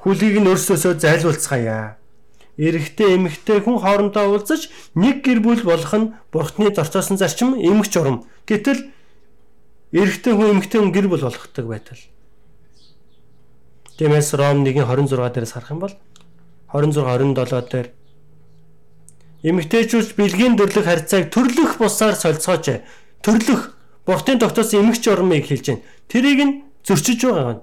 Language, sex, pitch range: English, male, 135-205 Hz